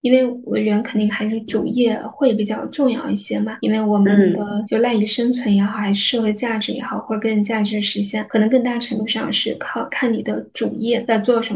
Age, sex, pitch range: 10-29, female, 205-245 Hz